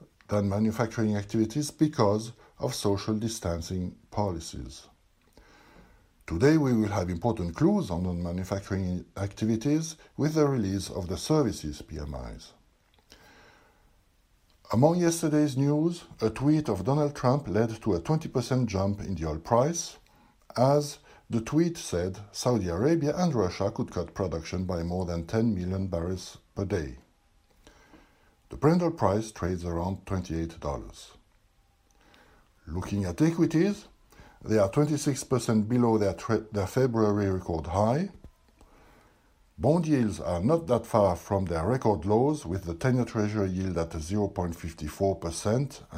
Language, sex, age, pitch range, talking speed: English, male, 60-79, 90-125 Hz, 125 wpm